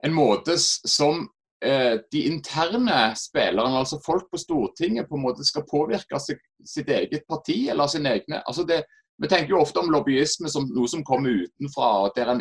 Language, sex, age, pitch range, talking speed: English, male, 30-49, 135-185 Hz, 185 wpm